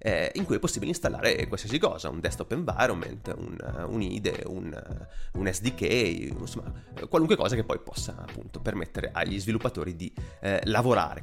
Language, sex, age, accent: Italian, male, 30-49, native